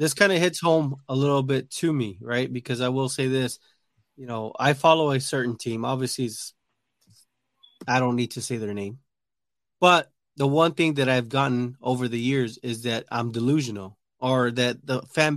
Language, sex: English, male